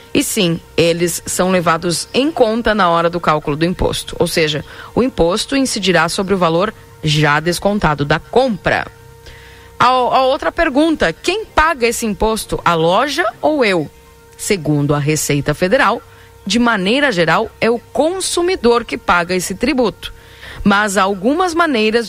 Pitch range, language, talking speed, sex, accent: 160-240 Hz, Portuguese, 145 wpm, female, Brazilian